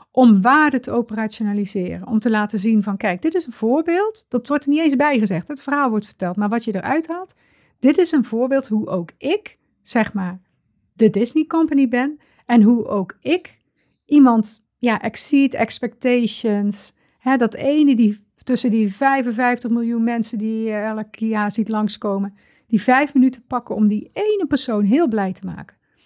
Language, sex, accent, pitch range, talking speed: Dutch, female, Dutch, 205-255 Hz, 175 wpm